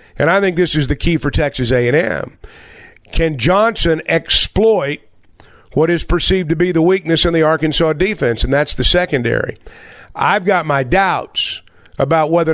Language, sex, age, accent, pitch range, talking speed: English, male, 50-69, American, 145-185 Hz, 165 wpm